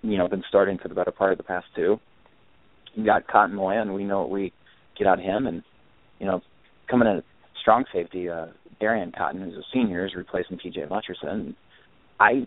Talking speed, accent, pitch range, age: 210 wpm, American, 90-100 Hz, 30-49